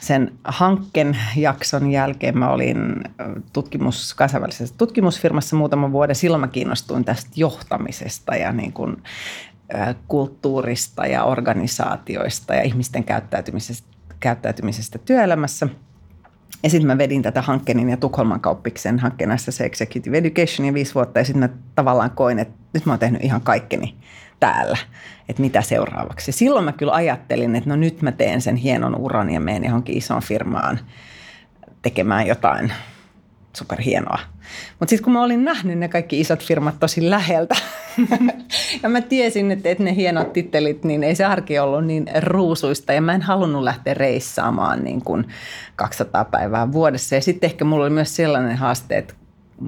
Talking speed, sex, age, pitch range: 150 wpm, female, 30-49, 125-165 Hz